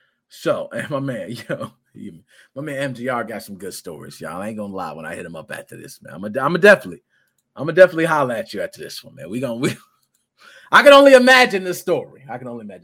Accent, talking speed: American, 245 wpm